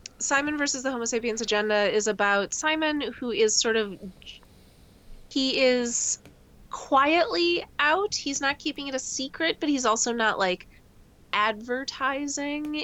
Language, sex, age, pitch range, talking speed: English, female, 20-39, 195-250 Hz, 135 wpm